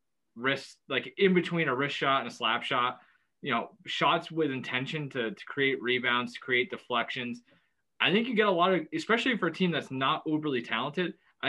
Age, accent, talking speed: 20-39, American, 205 wpm